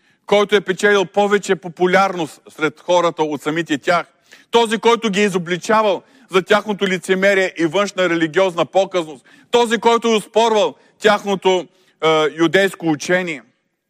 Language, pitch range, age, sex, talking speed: Bulgarian, 160-205 Hz, 40-59, male, 130 wpm